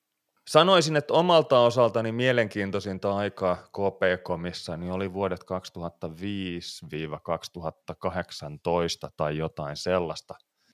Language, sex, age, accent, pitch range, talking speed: Finnish, male, 30-49, native, 85-105 Hz, 80 wpm